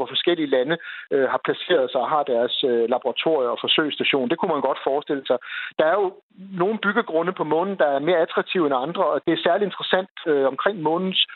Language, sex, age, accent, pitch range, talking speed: Danish, male, 60-79, native, 150-205 Hz, 215 wpm